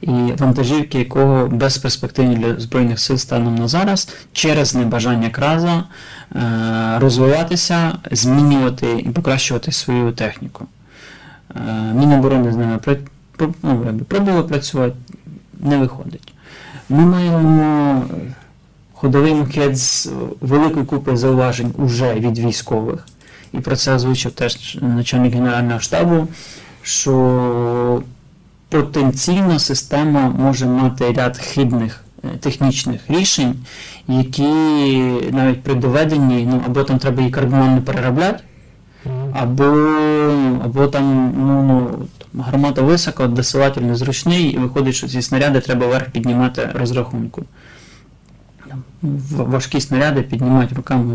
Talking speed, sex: 100 wpm, male